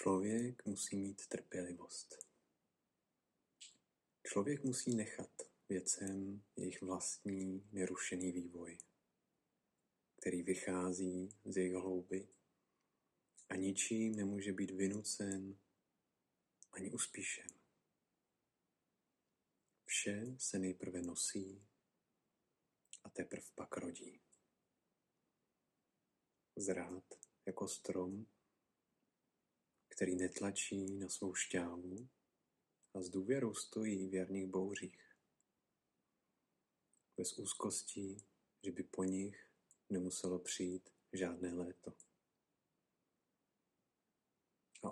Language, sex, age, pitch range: Czech, male, 40-59, 90-100 Hz